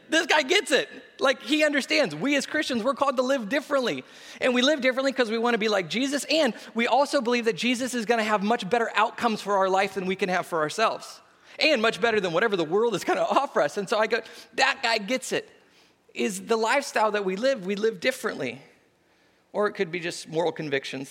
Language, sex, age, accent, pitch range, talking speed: English, male, 30-49, American, 160-235 Hz, 240 wpm